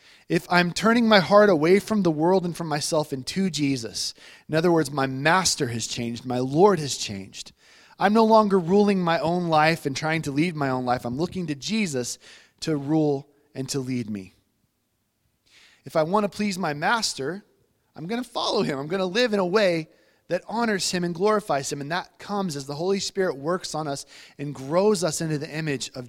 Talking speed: 210 wpm